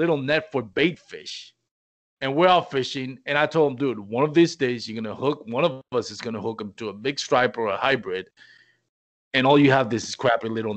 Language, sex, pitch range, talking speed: English, male, 120-160 Hz, 240 wpm